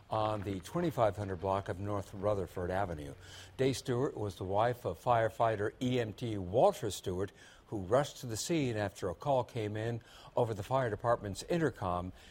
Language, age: English, 60-79